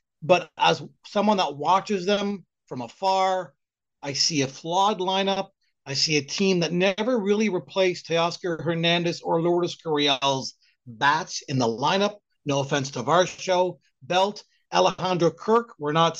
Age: 40-59